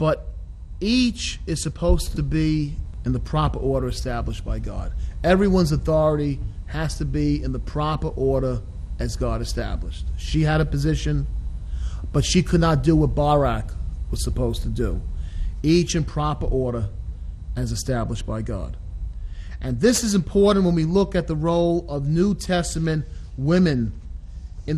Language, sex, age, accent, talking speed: English, male, 40-59, American, 155 wpm